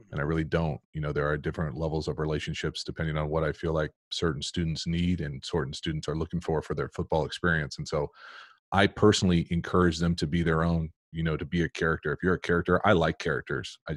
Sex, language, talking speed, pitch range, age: male, English, 235 wpm, 80-90 Hz, 30-49